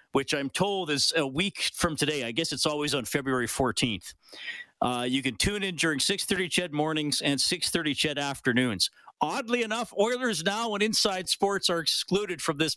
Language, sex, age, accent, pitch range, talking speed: English, male, 40-59, American, 130-185 Hz, 185 wpm